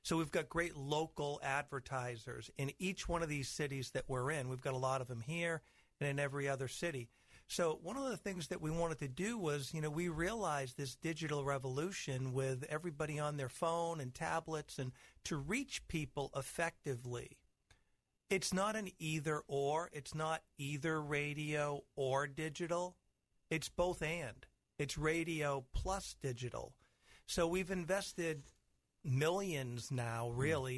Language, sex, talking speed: English, male, 160 wpm